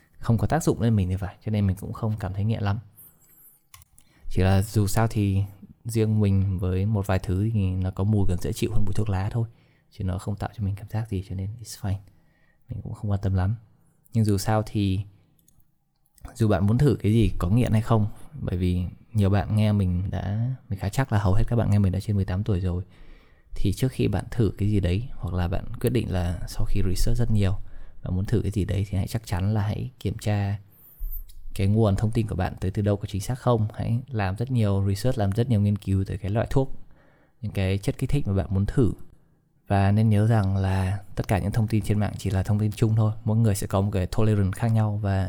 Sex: male